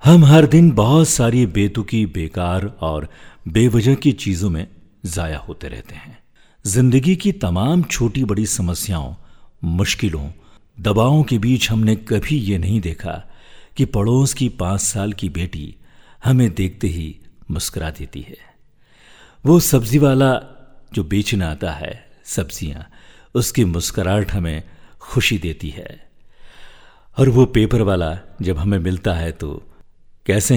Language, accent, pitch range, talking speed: Hindi, native, 90-125 Hz, 135 wpm